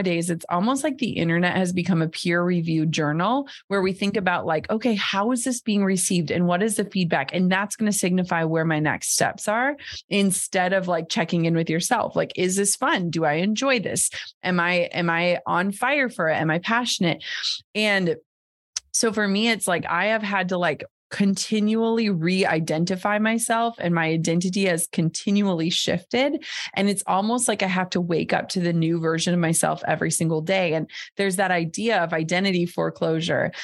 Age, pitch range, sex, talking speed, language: 30-49, 170-200 Hz, female, 195 wpm, English